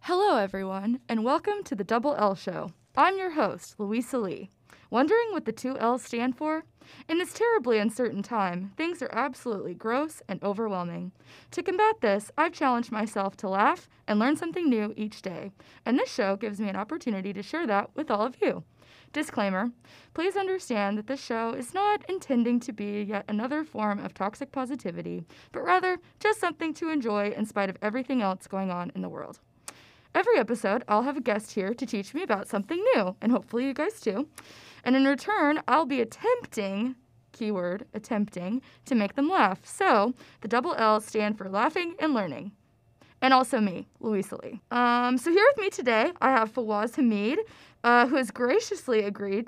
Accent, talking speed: American, 185 wpm